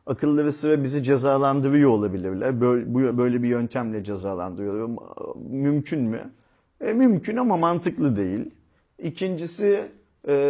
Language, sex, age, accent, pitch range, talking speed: Turkish, male, 40-59, native, 130-160 Hz, 110 wpm